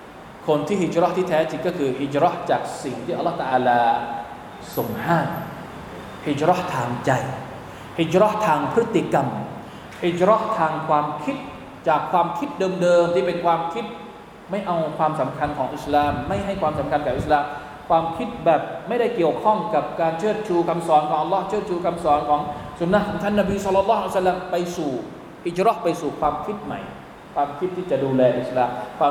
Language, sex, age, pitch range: Thai, male, 20-39, 145-185 Hz